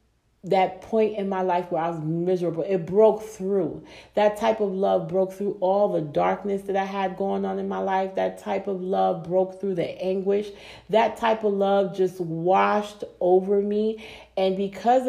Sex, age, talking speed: female, 40-59, 185 wpm